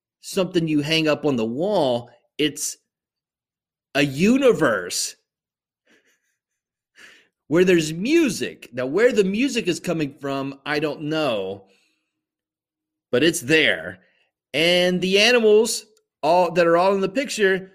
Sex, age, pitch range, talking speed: male, 30-49, 135-200 Hz, 120 wpm